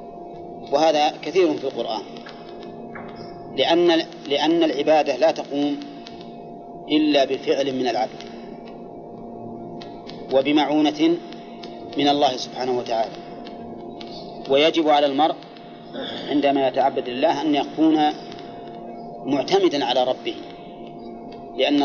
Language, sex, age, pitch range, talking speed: Arabic, male, 40-59, 130-160 Hz, 80 wpm